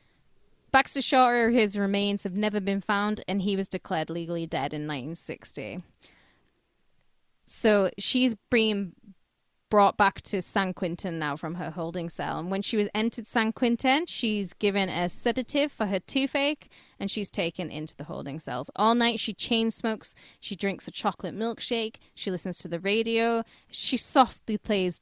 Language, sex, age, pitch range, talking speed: English, female, 10-29, 180-235 Hz, 165 wpm